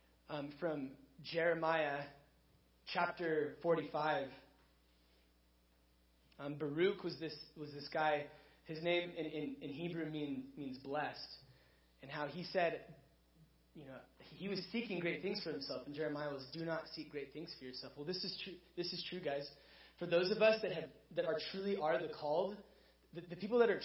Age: 20-39